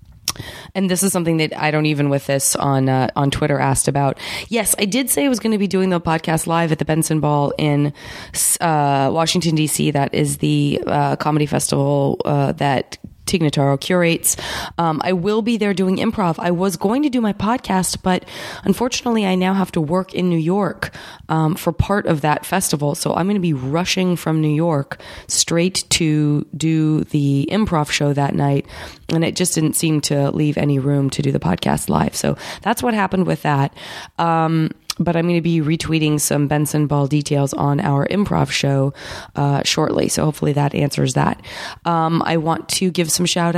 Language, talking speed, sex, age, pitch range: English, 195 wpm, female, 20-39, 145-180 Hz